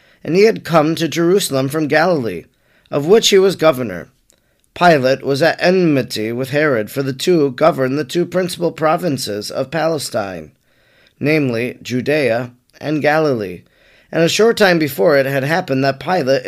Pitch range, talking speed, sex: 135-175 Hz, 155 wpm, male